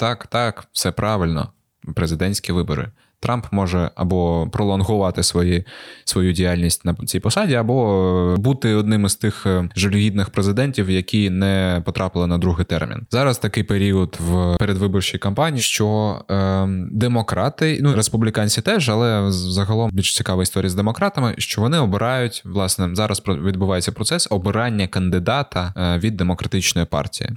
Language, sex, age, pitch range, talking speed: Ukrainian, male, 20-39, 90-115 Hz, 130 wpm